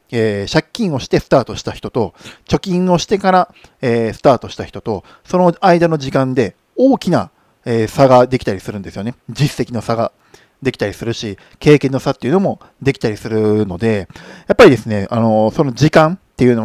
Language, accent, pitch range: Japanese, native, 105-150 Hz